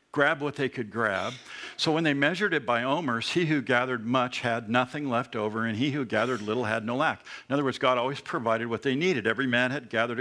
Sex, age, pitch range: male, 60-79, 120-150 Hz